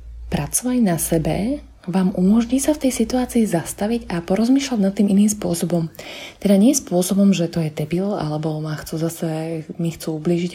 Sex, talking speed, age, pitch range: female, 175 wpm, 20-39, 175-210 Hz